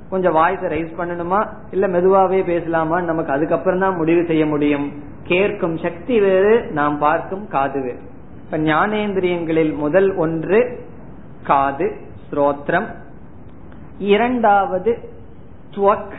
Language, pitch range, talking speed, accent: Tamil, 160-200 Hz, 75 wpm, native